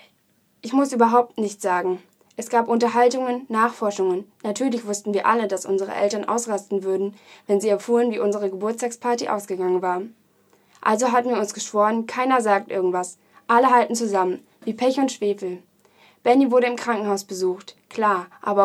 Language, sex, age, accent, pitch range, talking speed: German, female, 10-29, German, 200-240 Hz, 155 wpm